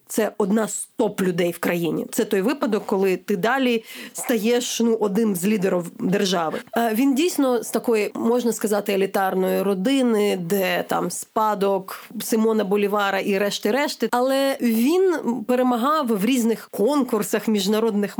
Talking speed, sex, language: 130 wpm, female, Ukrainian